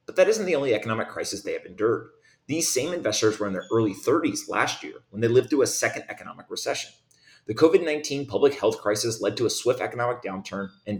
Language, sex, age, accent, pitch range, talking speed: English, male, 30-49, American, 105-145 Hz, 220 wpm